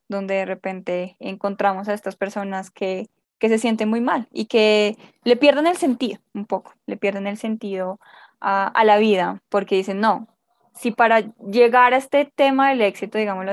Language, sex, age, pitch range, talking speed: Spanish, female, 10-29, 195-225 Hz, 180 wpm